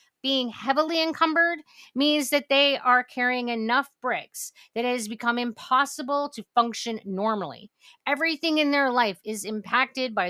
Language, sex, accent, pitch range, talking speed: English, female, American, 210-285 Hz, 145 wpm